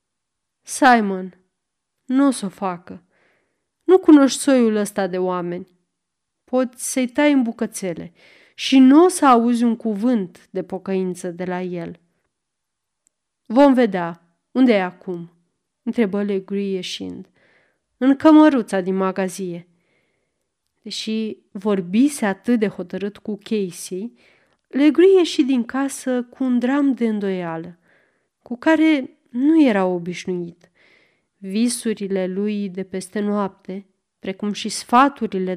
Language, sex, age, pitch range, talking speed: Romanian, female, 30-49, 190-245 Hz, 120 wpm